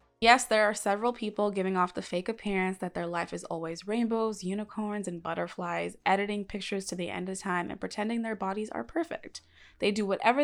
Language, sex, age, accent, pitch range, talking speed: English, female, 20-39, American, 180-225 Hz, 200 wpm